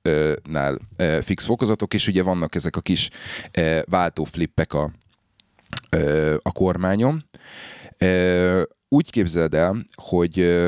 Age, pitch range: 30-49, 80-95 Hz